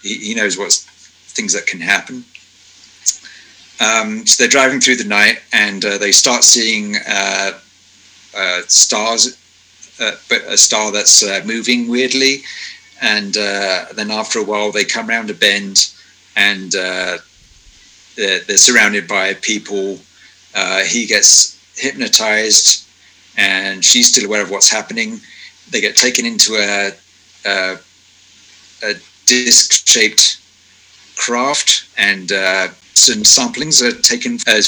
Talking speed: 130 wpm